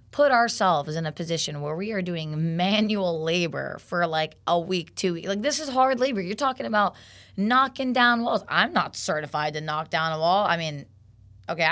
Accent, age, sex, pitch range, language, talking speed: American, 20-39, female, 145-195 Hz, English, 200 wpm